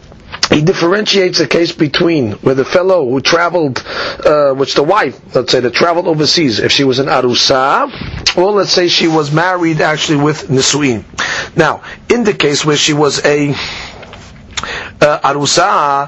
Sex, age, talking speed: male, 40-59, 160 wpm